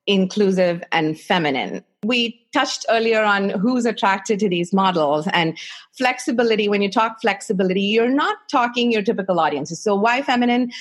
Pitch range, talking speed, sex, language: 185-240 Hz, 150 wpm, female, English